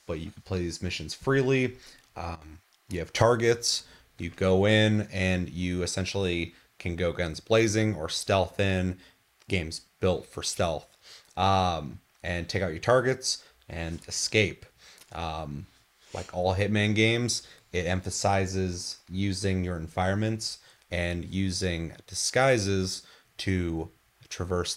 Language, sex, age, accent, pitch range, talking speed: English, male, 30-49, American, 90-105 Hz, 125 wpm